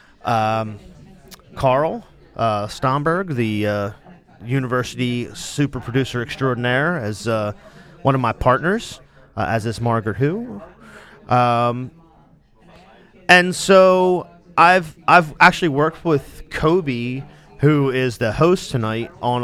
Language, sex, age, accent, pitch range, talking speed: English, male, 30-49, American, 120-155 Hz, 110 wpm